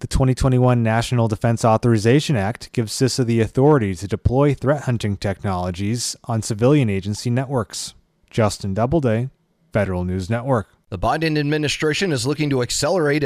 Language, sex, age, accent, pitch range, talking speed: English, male, 30-49, American, 115-155 Hz, 140 wpm